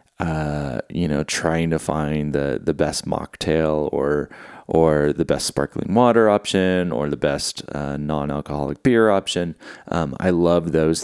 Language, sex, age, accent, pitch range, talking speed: English, male, 30-49, American, 80-100 Hz, 160 wpm